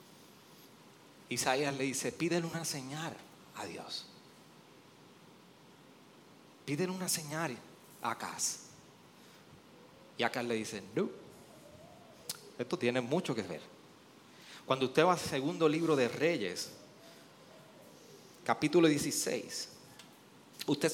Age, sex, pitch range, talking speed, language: 30-49, male, 145-195 Hz, 95 wpm, Spanish